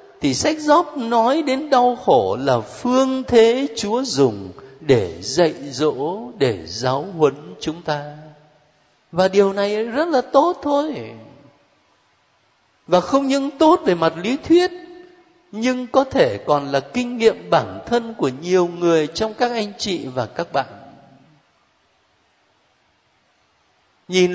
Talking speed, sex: 135 wpm, male